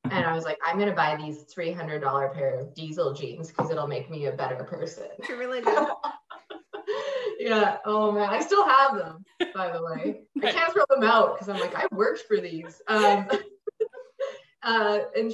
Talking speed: 190 wpm